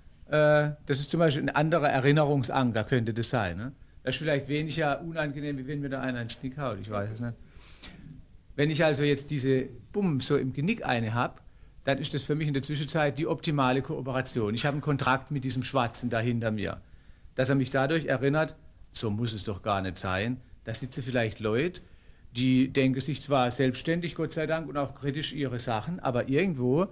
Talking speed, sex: 200 wpm, male